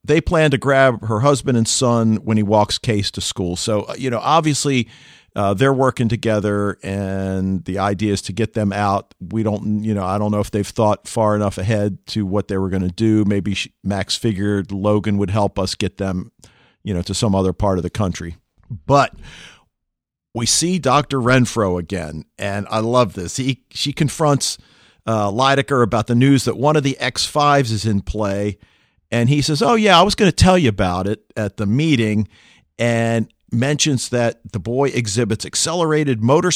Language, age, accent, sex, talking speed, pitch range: English, 50-69, American, male, 195 wpm, 105-135 Hz